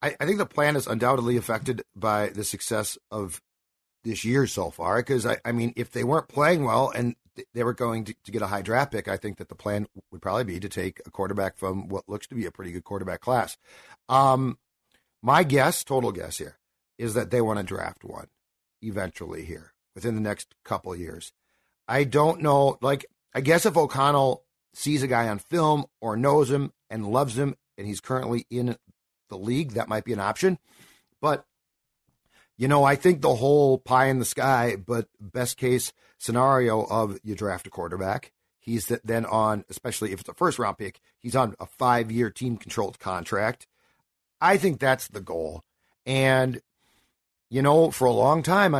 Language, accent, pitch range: English, American, 105-135 Hz